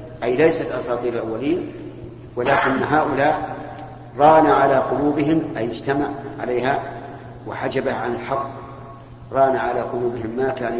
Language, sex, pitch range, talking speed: Arabic, male, 120-135 Hz, 110 wpm